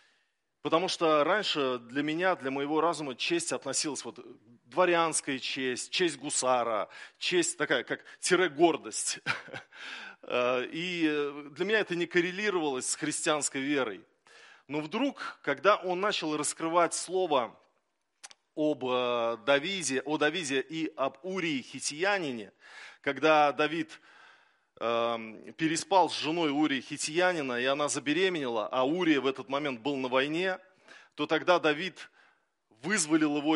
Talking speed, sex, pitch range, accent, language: 115 wpm, male, 130-175 Hz, native, Russian